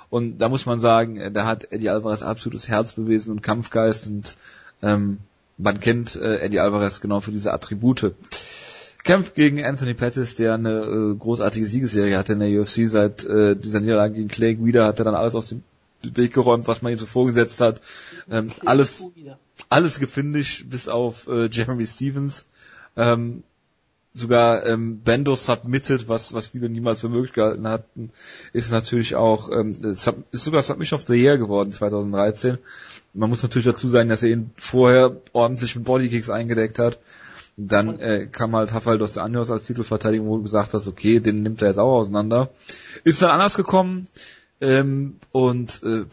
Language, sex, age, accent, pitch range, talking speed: German, male, 30-49, German, 110-125 Hz, 175 wpm